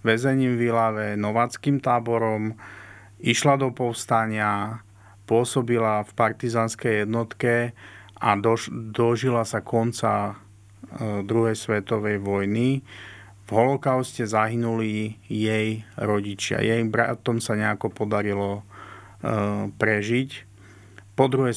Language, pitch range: Slovak, 105-115 Hz